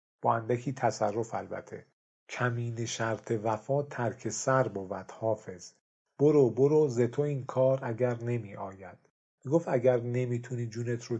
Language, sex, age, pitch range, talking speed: Persian, male, 50-69, 110-135 Hz, 135 wpm